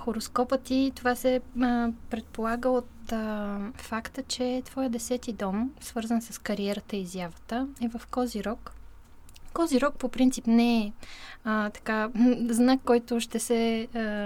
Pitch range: 215-250 Hz